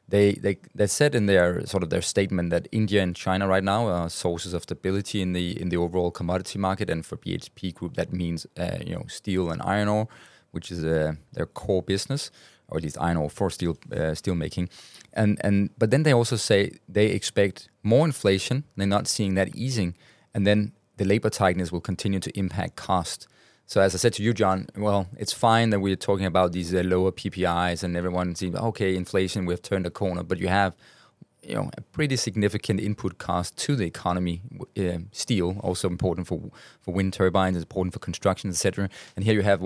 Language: English